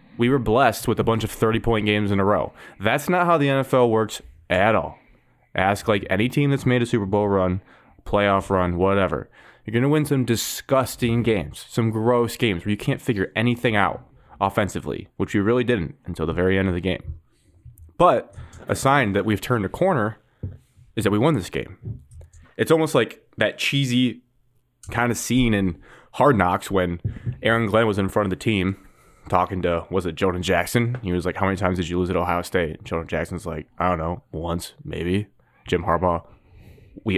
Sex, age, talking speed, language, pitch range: male, 20-39, 200 wpm, English, 90-115 Hz